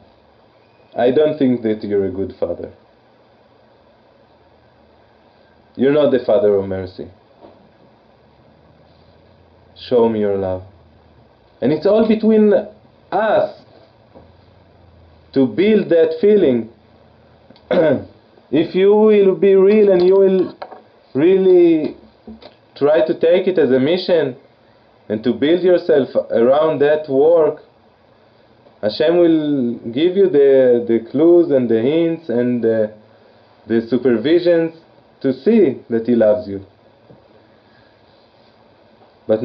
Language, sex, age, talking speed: English, male, 30-49, 110 wpm